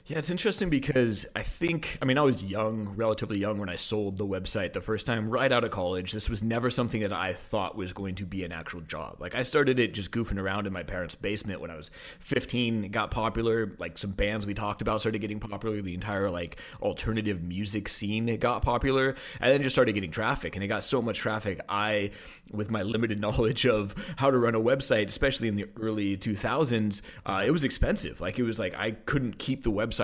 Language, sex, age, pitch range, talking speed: English, male, 30-49, 100-115 Hz, 230 wpm